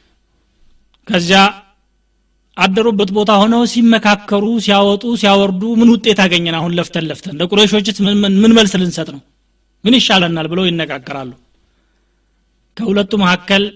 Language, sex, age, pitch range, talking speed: Amharic, male, 30-49, 160-205 Hz, 110 wpm